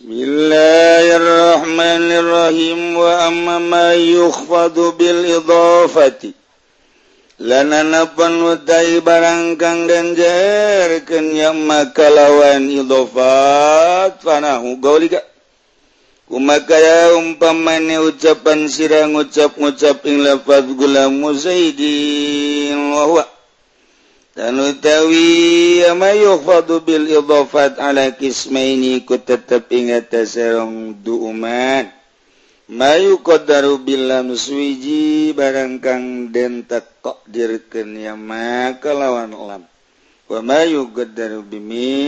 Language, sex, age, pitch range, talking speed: Indonesian, male, 50-69, 130-165 Hz, 75 wpm